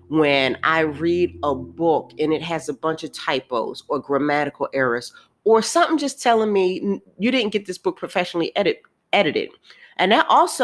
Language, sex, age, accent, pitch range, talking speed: English, female, 30-49, American, 150-200 Hz, 170 wpm